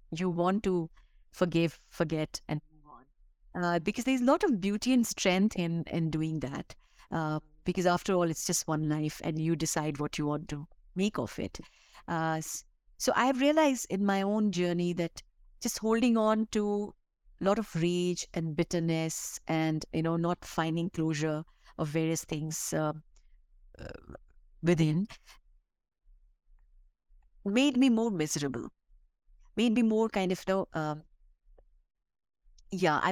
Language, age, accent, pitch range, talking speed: English, 50-69, Indian, 160-190 Hz, 150 wpm